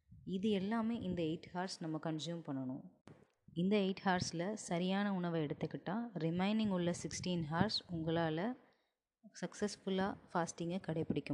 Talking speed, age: 110 wpm, 20-39